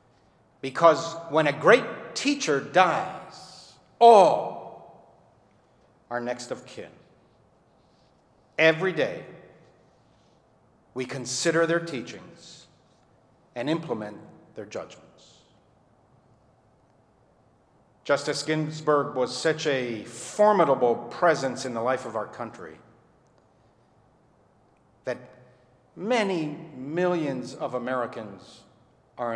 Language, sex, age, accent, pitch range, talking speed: English, male, 50-69, American, 125-160 Hz, 80 wpm